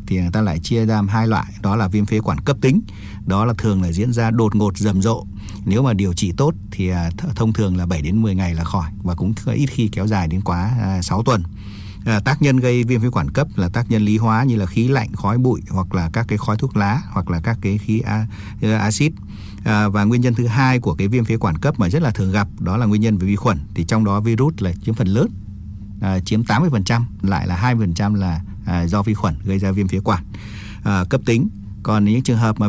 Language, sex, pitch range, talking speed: Vietnamese, male, 100-115 Hz, 250 wpm